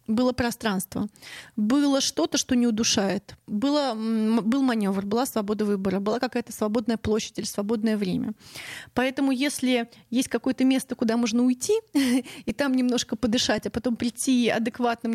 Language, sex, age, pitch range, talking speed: Russian, female, 20-39, 220-260 Hz, 145 wpm